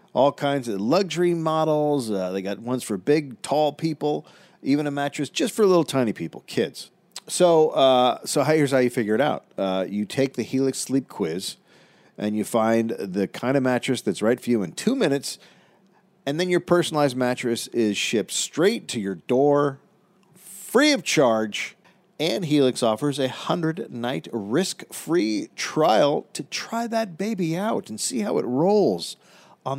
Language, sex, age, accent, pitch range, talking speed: English, male, 50-69, American, 115-165 Hz, 170 wpm